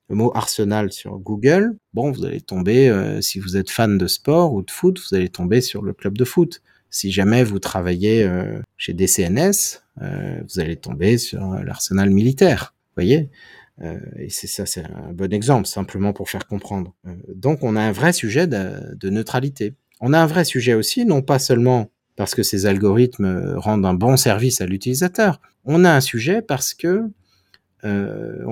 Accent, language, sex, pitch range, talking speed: French, French, male, 95-130 Hz, 190 wpm